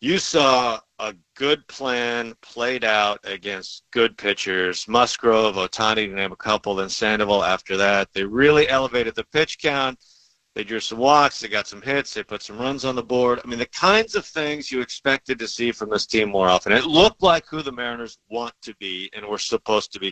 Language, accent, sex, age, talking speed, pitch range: English, American, male, 50-69, 210 wpm, 100-135 Hz